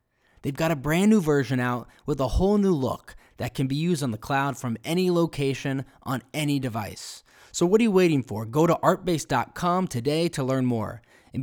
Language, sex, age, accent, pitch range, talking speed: English, male, 20-39, American, 125-170 Hz, 205 wpm